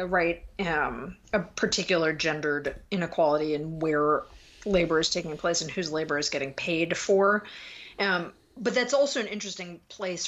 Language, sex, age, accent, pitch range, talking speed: English, female, 30-49, American, 150-195 Hz, 160 wpm